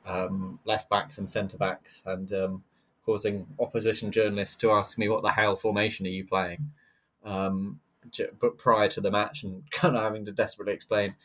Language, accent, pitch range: English, British, 100-115 Hz